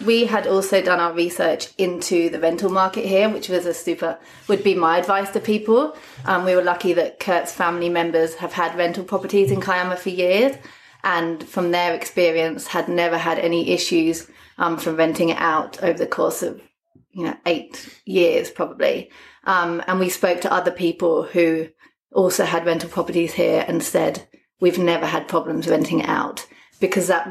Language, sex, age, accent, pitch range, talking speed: English, female, 30-49, British, 170-190 Hz, 185 wpm